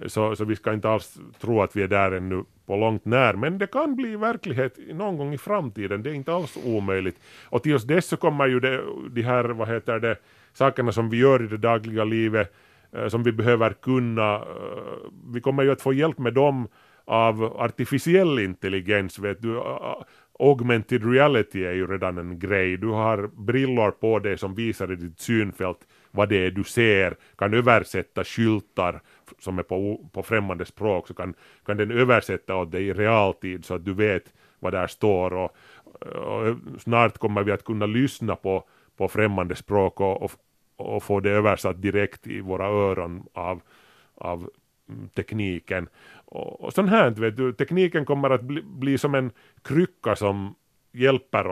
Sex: male